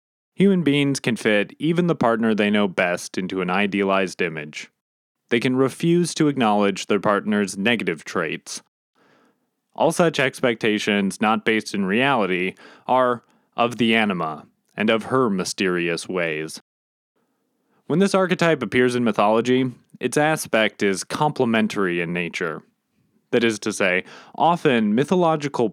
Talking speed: 135 wpm